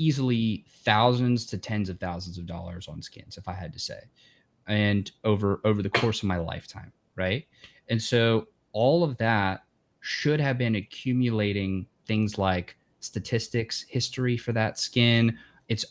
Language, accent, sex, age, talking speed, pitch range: English, American, male, 20-39, 155 wpm, 105-130 Hz